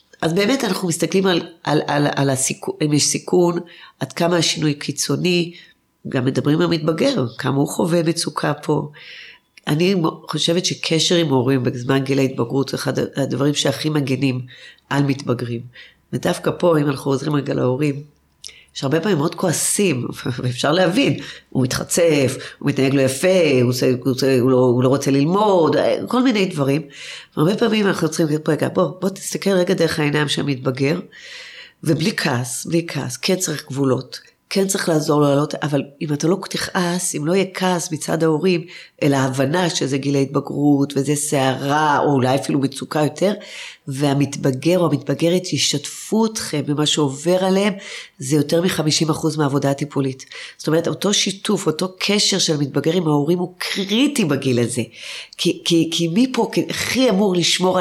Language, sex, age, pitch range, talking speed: Hebrew, female, 40-59, 140-180 Hz, 160 wpm